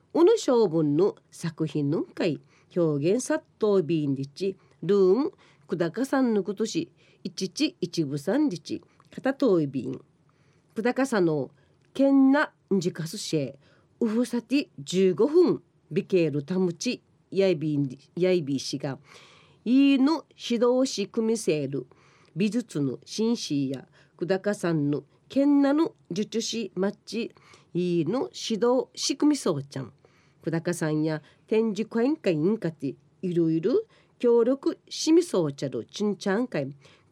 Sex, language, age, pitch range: female, Japanese, 40-59, 155-235 Hz